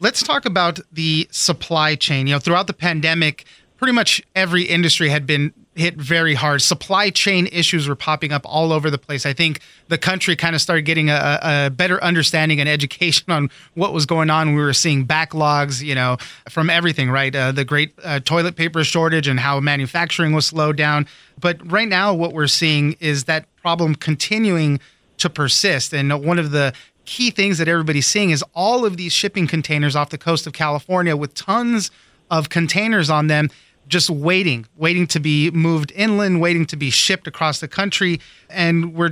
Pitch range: 150-175 Hz